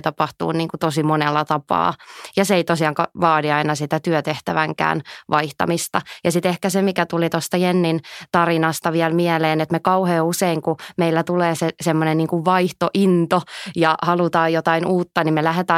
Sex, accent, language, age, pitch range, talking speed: female, native, Finnish, 20-39, 155-170 Hz, 165 wpm